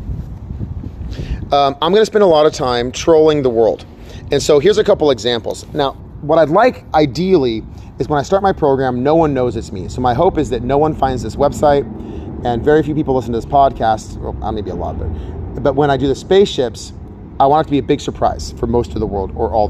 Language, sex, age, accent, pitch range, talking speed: English, male, 30-49, American, 110-150 Hz, 230 wpm